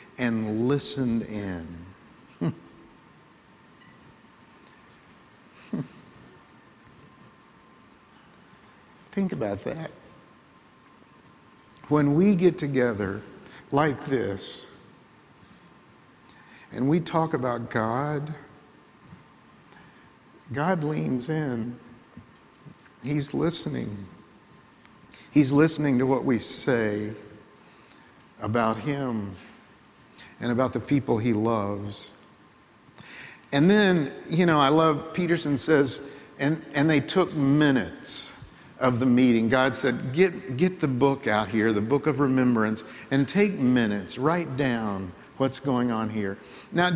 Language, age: English, 60-79